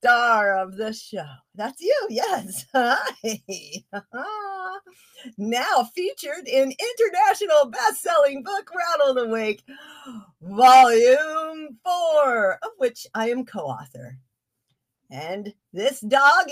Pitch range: 180-270 Hz